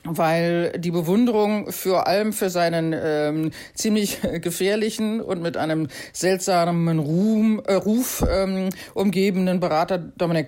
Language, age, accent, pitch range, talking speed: German, 40-59, German, 170-210 Hz, 115 wpm